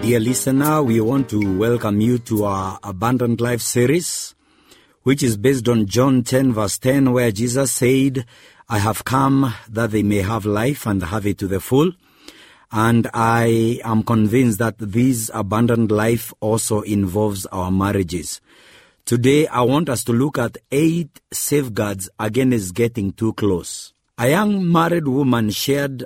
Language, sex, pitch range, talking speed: English, male, 105-135 Hz, 155 wpm